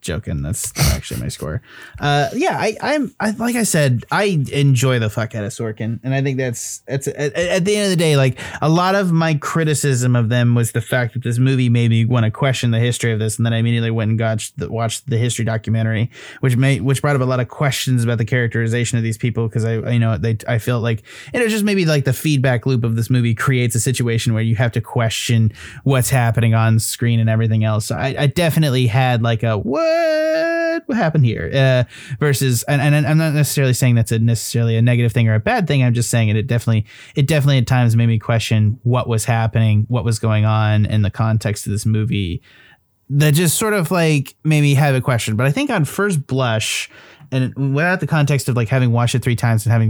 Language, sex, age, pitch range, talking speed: English, male, 20-39, 115-145 Hz, 245 wpm